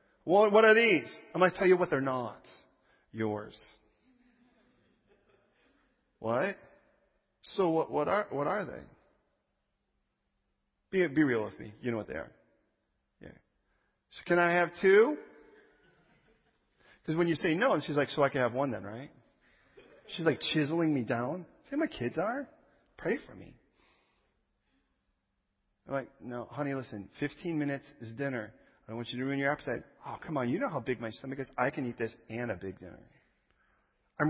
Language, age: English, 40-59